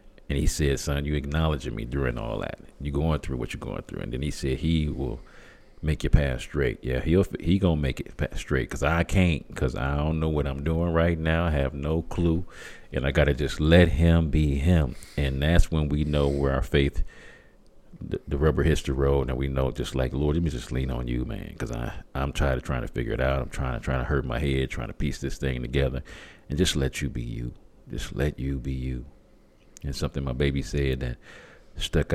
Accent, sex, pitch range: American, male, 65-80 Hz